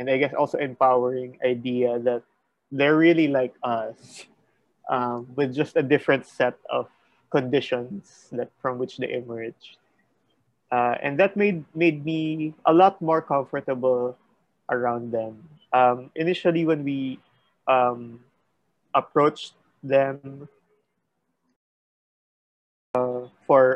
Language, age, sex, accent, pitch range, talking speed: Filipino, 20-39, male, native, 125-155 Hz, 115 wpm